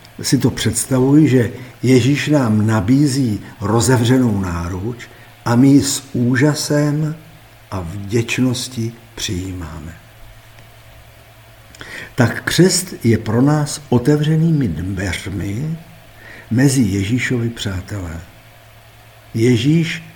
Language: Czech